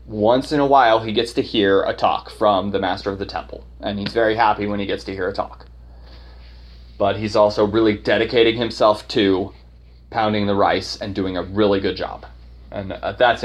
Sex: male